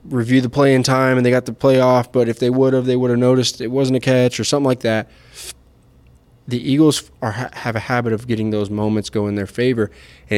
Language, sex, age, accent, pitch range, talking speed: English, male, 20-39, American, 105-125 Hz, 235 wpm